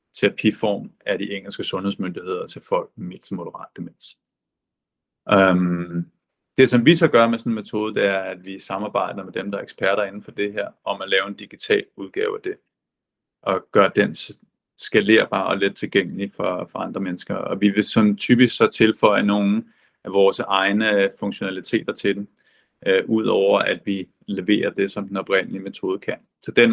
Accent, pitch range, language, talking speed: native, 95-115 Hz, Danish, 180 wpm